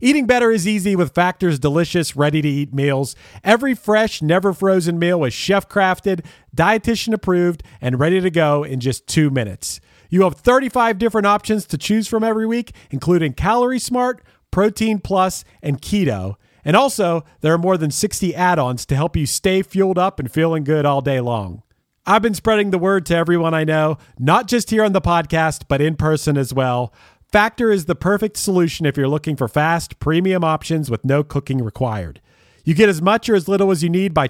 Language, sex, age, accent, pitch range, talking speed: English, male, 40-59, American, 140-200 Hz, 200 wpm